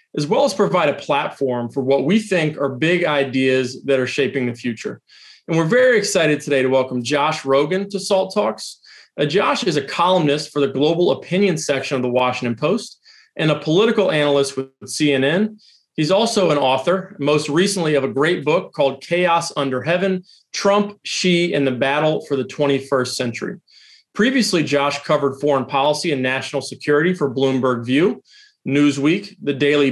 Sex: male